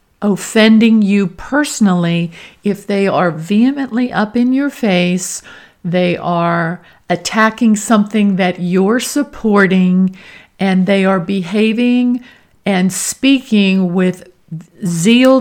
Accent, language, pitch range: American, English, 180-220 Hz